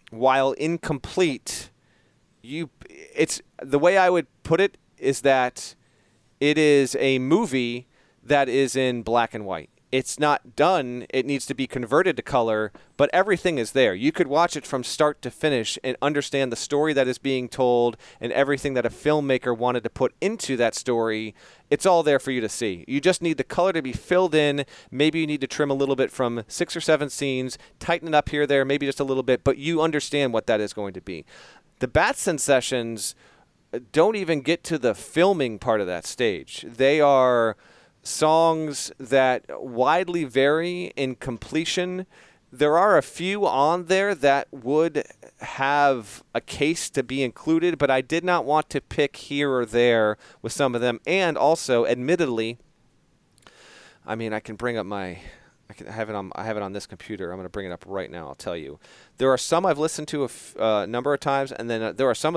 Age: 40-59